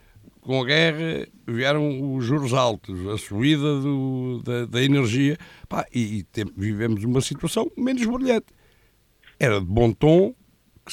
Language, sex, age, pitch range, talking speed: Portuguese, male, 60-79, 110-170 Hz, 135 wpm